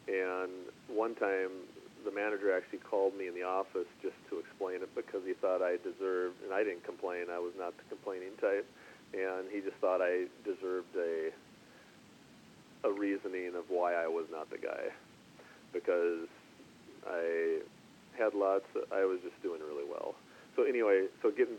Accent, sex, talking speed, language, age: American, male, 165 wpm, English, 40-59